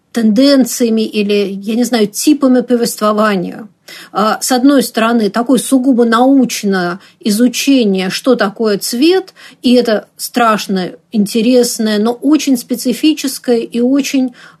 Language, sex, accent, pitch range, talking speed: Russian, female, native, 215-265 Hz, 105 wpm